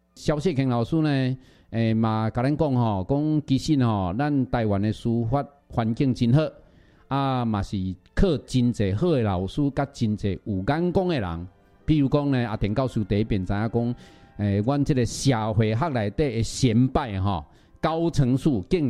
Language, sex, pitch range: Chinese, male, 100-140 Hz